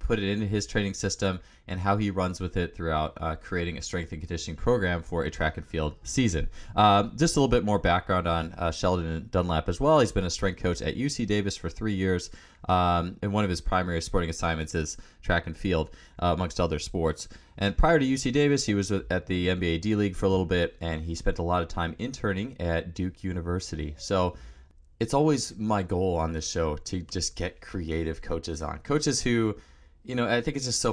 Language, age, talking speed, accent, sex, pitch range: English, 20-39, 225 wpm, American, male, 80-100 Hz